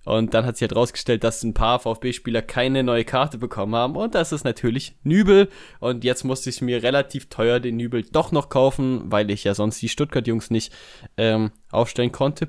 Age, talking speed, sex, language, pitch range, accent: 10-29, 200 wpm, male, German, 115-145 Hz, German